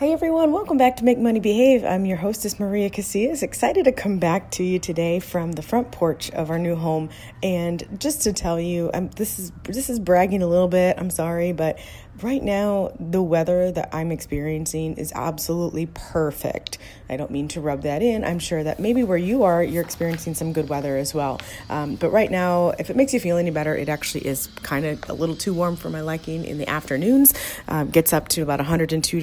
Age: 30-49